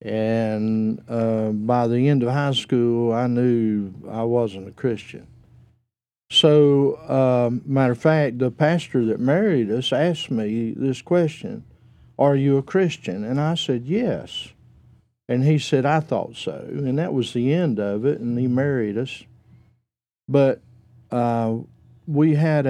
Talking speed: 150 wpm